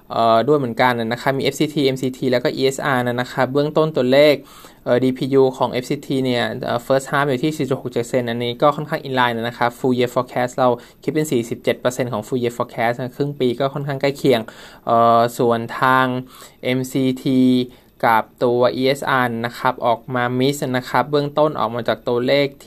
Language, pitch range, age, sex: Thai, 125-140 Hz, 20-39, male